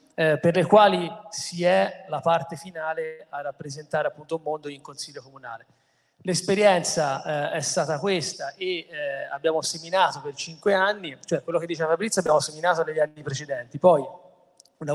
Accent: native